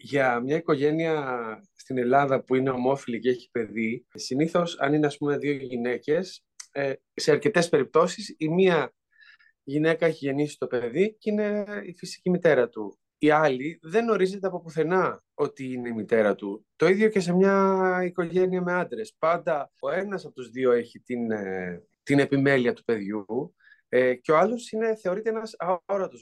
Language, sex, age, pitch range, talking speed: Greek, male, 30-49, 125-185 Hz, 165 wpm